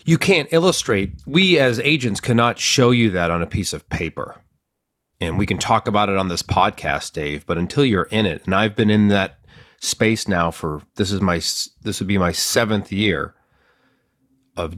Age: 30-49